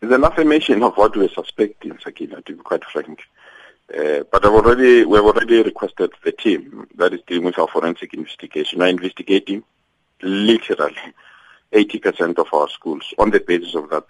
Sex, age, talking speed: male, 50-69, 175 wpm